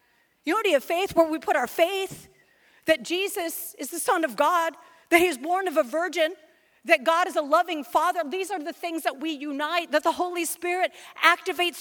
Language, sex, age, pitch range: English, female, 40-59, 270-345 Hz